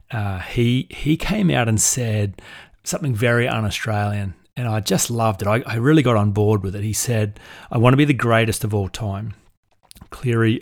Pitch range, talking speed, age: 105-120 Hz, 200 wpm, 30-49